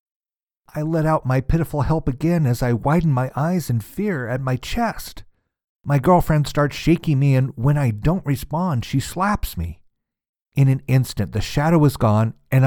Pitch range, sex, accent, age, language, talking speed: 105-145 Hz, male, American, 50-69, English, 180 wpm